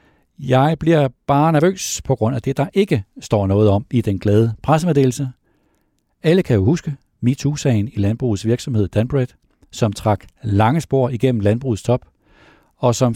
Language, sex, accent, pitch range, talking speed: Danish, male, native, 100-135 Hz, 160 wpm